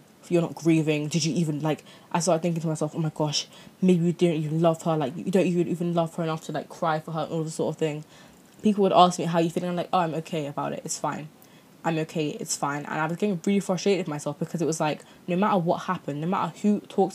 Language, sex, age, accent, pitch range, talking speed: English, female, 20-39, British, 155-185 Hz, 285 wpm